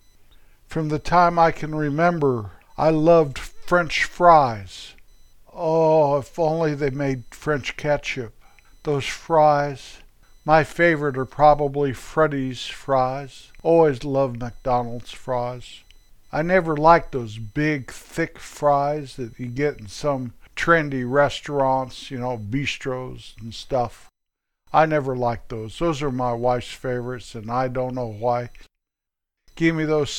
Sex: male